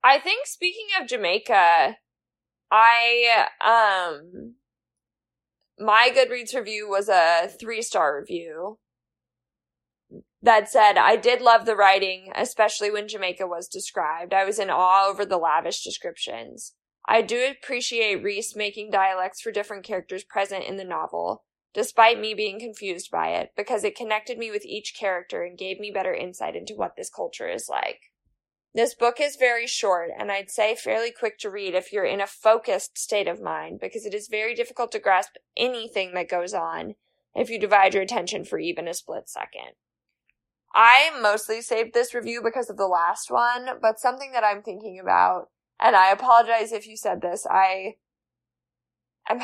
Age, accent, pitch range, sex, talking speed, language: 20-39, American, 195-240 Hz, female, 165 wpm, English